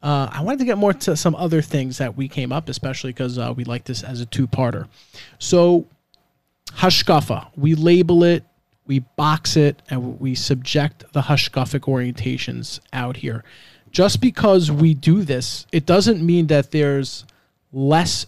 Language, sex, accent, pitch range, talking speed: English, male, American, 130-160 Hz, 160 wpm